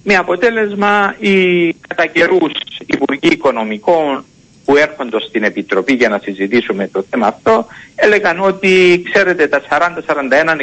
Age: 60-79